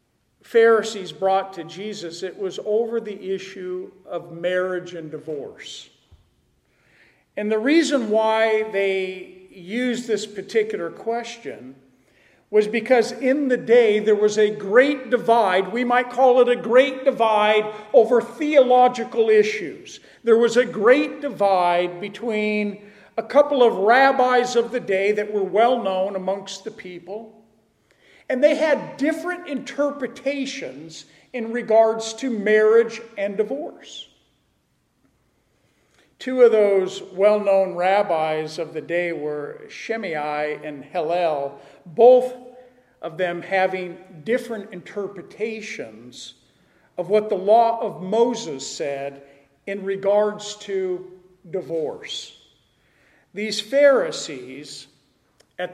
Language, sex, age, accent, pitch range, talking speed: English, male, 50-69, American, 185-245 Hz, 115 wpm